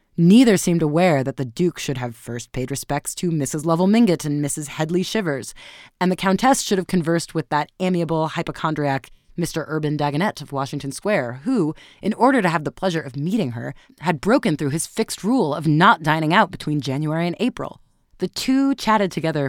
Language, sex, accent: English, female, American